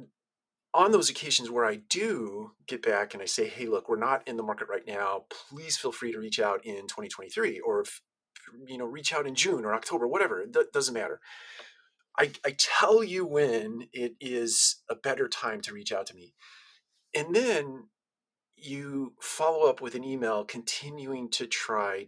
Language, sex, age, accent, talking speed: English, male, 40-59, American, 185 wpm